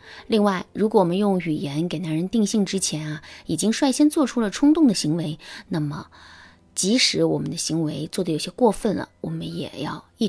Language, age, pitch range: Chinese, 20-39, 160-225 Hz